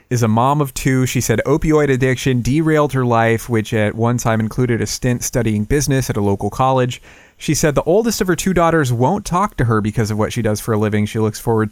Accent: American